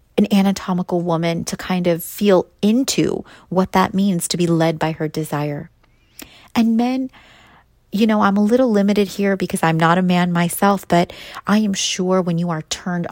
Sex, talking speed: female, 180 wpm